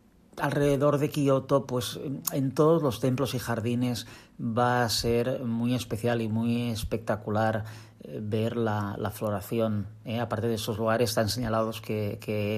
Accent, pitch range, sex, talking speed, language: Spanish, 110-125 Hz, male, 150 wpm, Spanish